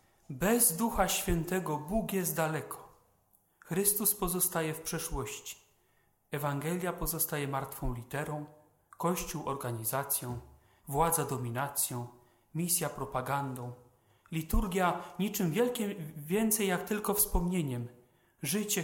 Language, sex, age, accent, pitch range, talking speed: Polish, male, 40-59, native, 135-195 Hz, 90 wpm